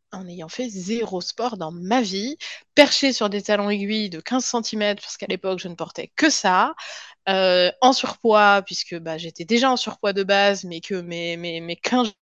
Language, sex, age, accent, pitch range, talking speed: French, female, 20-39, French, 190-255 Hz, 200 wpm